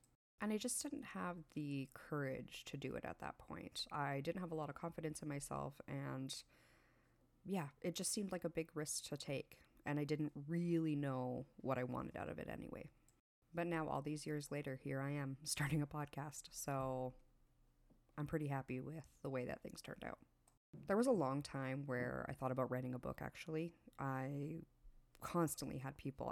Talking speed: 195 wpm